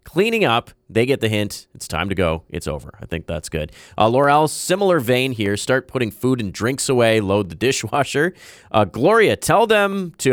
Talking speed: 205 wpm